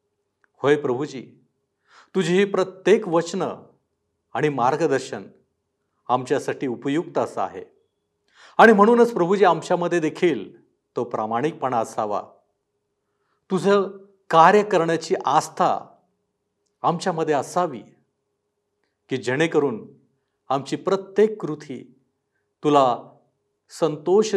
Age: 50-69